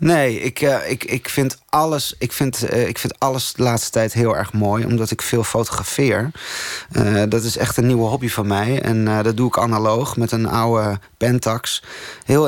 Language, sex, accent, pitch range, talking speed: Dutch, male, Dutch, 115-140 Hz, 170 wpm